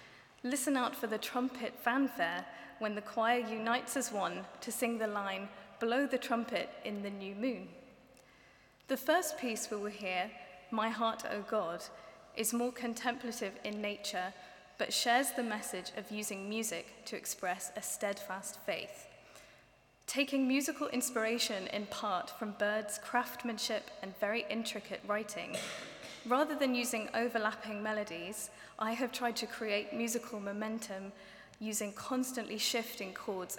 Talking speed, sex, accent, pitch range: 140 wpm, female, British, 205-240 Hz